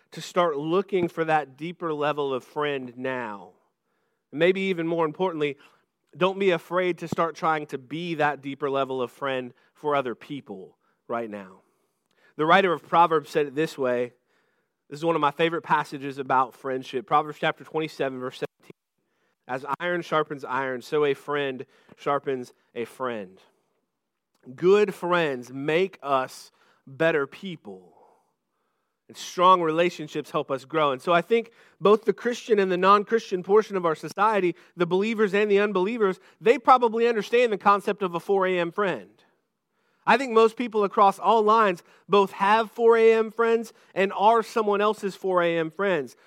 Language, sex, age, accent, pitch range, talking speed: English, male, 40-59, American, 145-205 Hz, 160 wpm